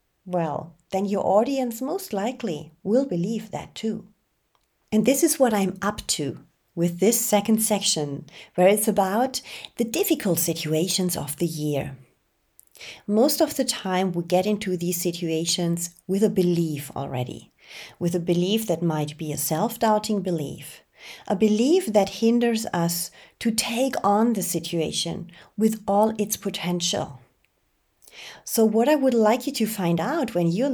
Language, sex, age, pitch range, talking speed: English, female, 30-49, 170-225 Hz, 150 wpm